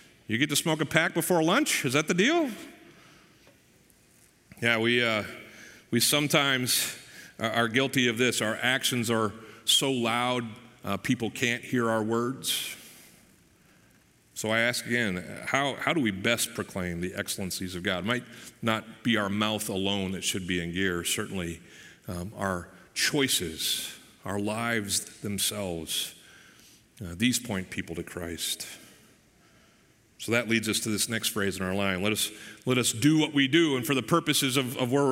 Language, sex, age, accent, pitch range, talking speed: English, male, 40-59, American, 105-130 Hz, 165 wpm